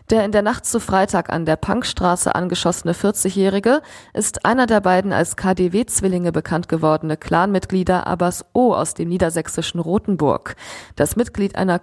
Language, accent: German, German